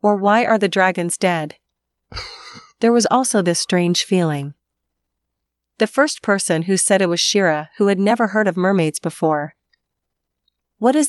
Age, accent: 40-59, American